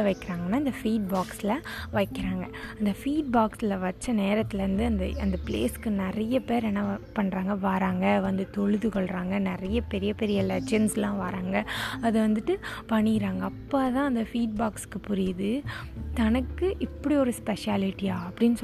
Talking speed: 80 wpm